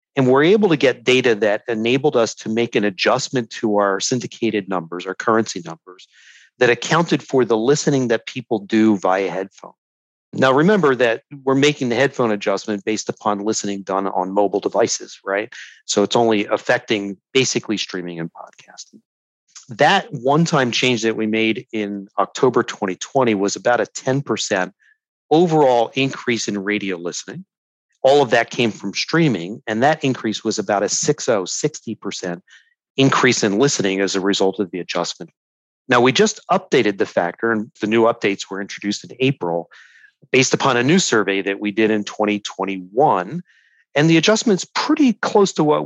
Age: 40-59